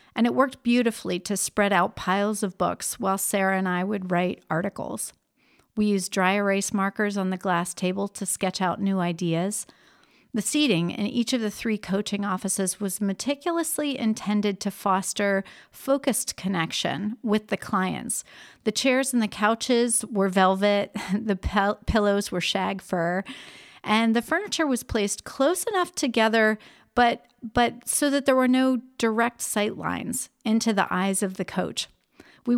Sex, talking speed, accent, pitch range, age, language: female, 160 wpm, American, 190-235 Hz, 40-59, English